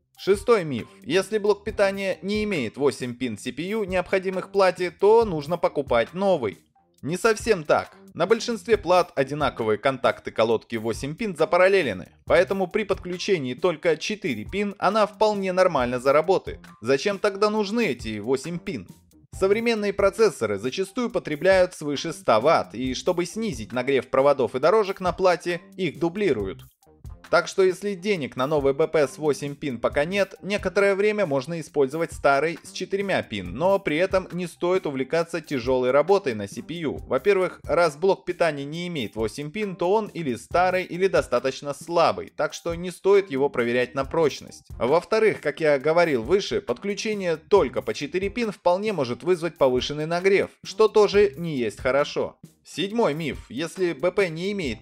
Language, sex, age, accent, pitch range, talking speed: Russian, male, 20-39, native, 140-200 Hz, 155 wpm